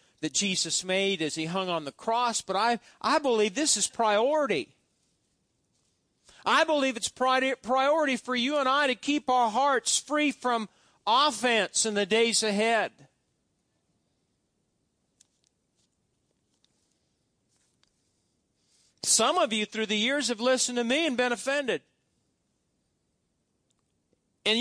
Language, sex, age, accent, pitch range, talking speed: English, male, 40-59, American, 210-275 Hz, 120 wpm